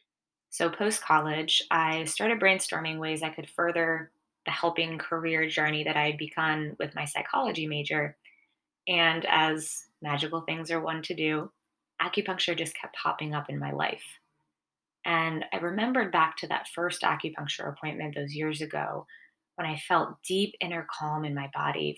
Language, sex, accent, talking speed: English, female, American, 160 wpm